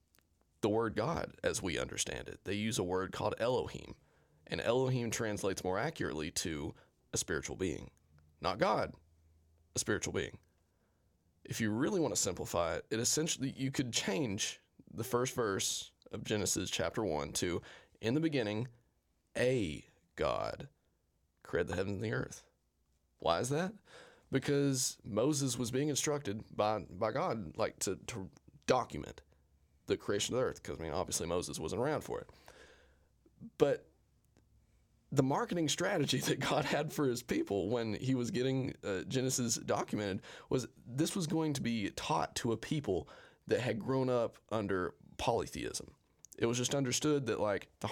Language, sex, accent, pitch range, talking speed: English, male, American, 95-140 Hz, 160 wpm